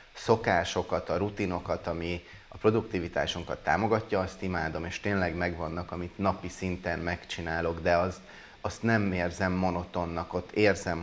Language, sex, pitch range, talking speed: Hungarian, male, 85-95 Hz, 130 wpm